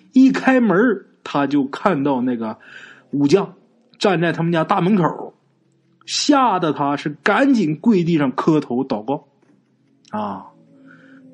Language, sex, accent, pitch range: Chinese, male, native, 125-195 Hz